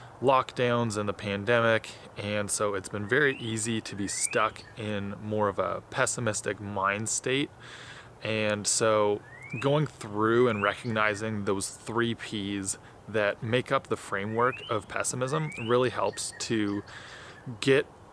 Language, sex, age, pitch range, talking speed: English, male, 20-39, 105-120 Hz, 130 wpm